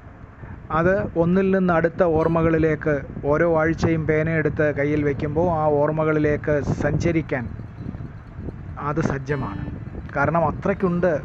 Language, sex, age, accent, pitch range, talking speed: Malayalam, male, 30-49, native, 135-170 Hz, 90 wpm